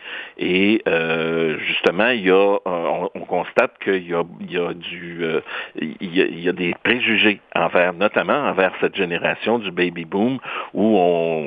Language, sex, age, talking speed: French, male, 60-79, 165 wpm